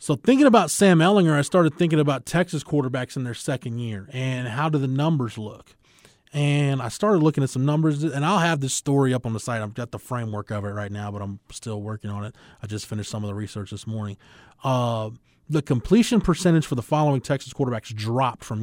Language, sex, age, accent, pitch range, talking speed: English, male, 20-39, American, 110-140 Hz, 230 wpm